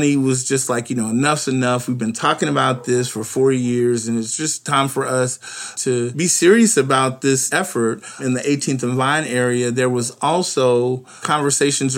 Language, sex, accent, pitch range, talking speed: English, male, American, 120-135 Hz, 185 wpm